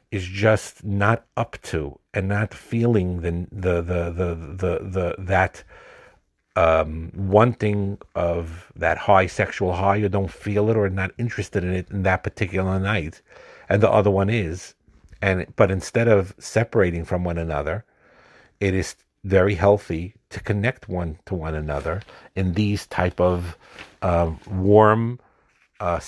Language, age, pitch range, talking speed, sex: English, 50-69, 85-100 Hz, 150 wpm, male